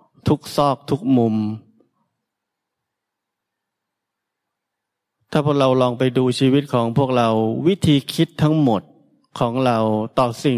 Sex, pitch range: male, 115-140 Hz